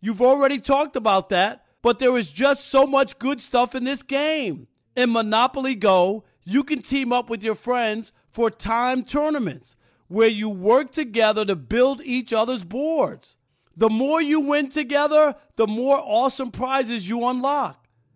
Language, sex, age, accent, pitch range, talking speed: English, male, 40-59, American, 205-270 Hz, 160 wpm